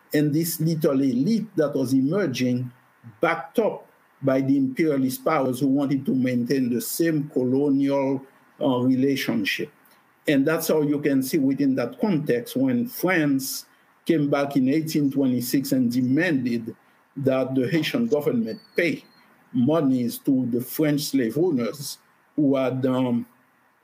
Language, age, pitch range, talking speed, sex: English, 50-69, 135-170 Hz, 135 wpm, male